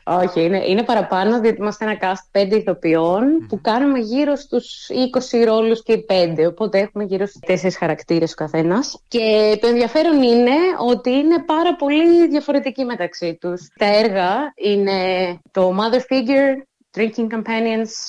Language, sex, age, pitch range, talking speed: Greek, female, 20-39, 190-255 Hz, 155 wpm